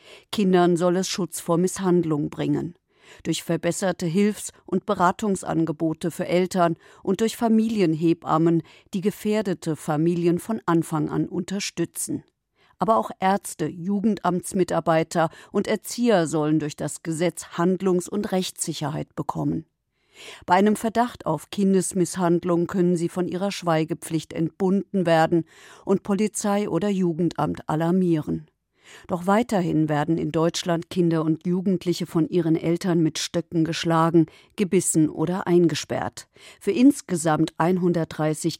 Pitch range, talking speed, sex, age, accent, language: 160-190 Hz, 115 wpm, female, 50-69, German, German